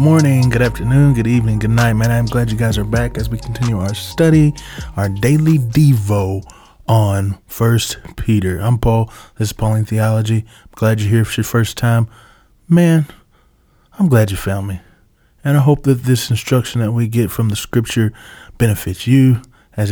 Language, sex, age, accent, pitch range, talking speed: English, male, 20-39, American, 105-130 Hz, 180 wpm